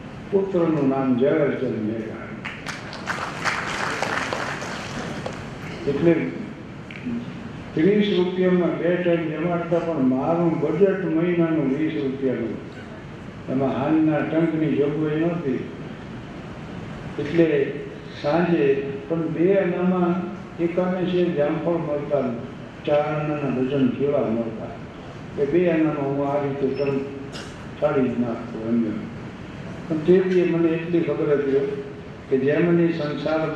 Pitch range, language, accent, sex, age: 135-165 Hz, Gujarati, native, male, 60-79